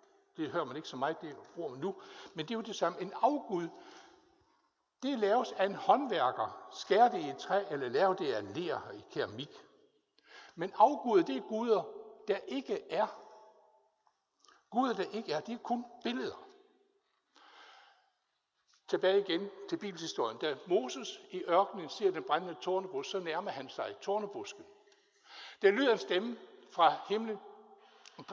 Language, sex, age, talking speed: Danish, male, 60-79, 160 wpm